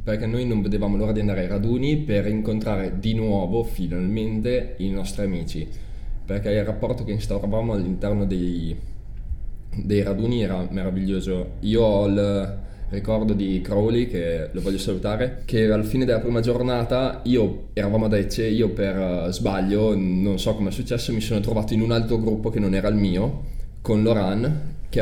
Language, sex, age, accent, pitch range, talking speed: Italian, male, 20-39, native, 95-110 Hz, 170 wpm